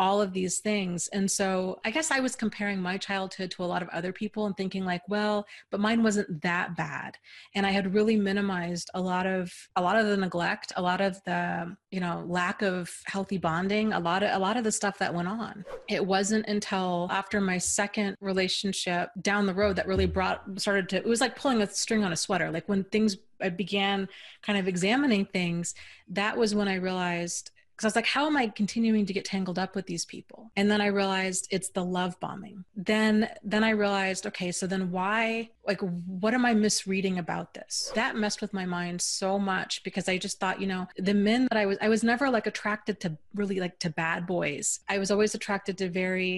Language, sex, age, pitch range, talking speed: English, female, 30-49, 180-210 Hz, 225 wpm